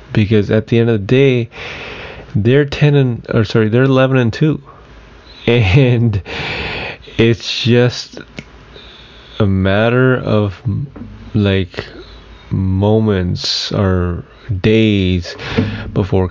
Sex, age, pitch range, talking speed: male, 20-39, 100-115 Hz, 100 wpm